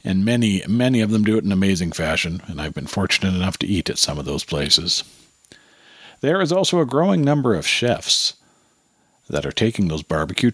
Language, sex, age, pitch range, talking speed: English, male, 50-69, 95-145 Hz, 200 wpm